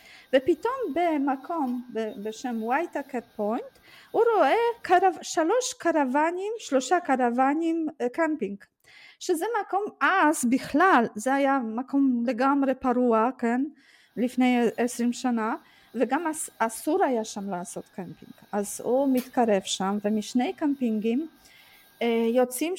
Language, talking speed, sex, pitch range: Hebrew, 105 wpm, female, 240-330 Hz